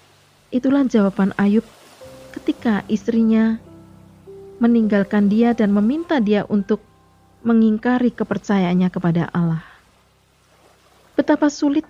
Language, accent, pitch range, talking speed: Indonesian, native, 195-245 Hz, 85 wpm